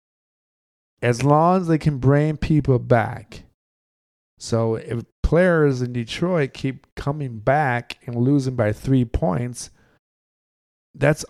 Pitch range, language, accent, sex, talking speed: 110-135 Hz, English, American, male, 115 wpm